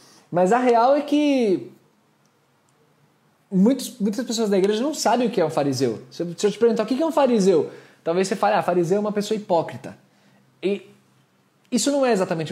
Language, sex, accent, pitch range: Portuguese, male, Brazilian, 145-210 Hz